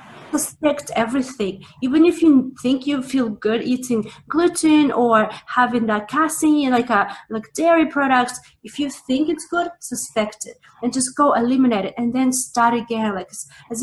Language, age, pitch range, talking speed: English, 30-49, 225-275 Hz, 165 wpm